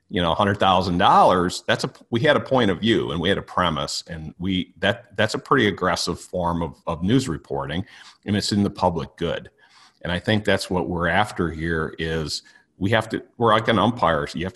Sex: male